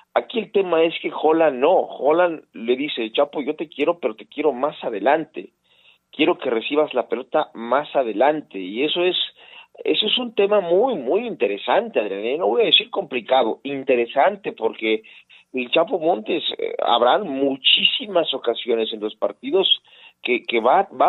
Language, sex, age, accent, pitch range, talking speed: Spanish, male, 40-59, Mexican, 120-180 Hz, 170 wpm